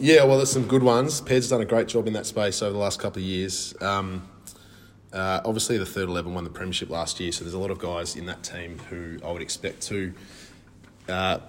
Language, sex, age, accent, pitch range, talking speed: English, male, 20-39, Australian, 85-100 Hz, 240 wpm